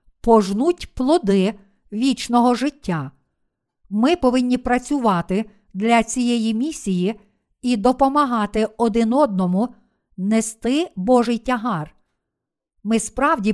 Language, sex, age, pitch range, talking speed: Ukrainian, female, 50-69, 205-250 Hz, 85 wpm